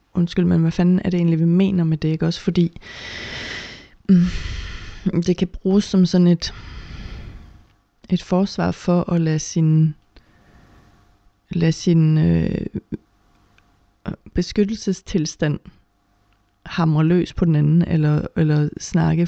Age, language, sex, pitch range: 30-49, Danish, female, 105-175 Hz